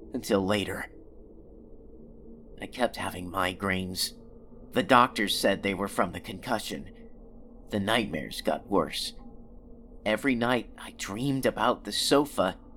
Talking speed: 115 wpm